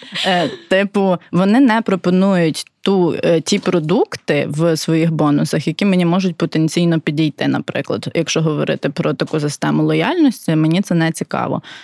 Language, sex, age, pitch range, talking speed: Ukrainian, female, 20-39, 165-210 Hz, 140 wpm